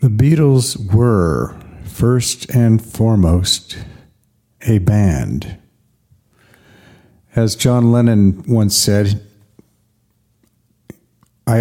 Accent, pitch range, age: American, 100-115 Hz, 50-69